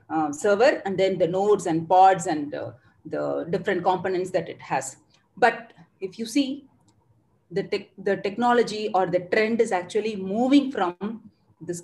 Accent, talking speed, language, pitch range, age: Indian, 155 wpm, English, 175-230 Hz, 30-49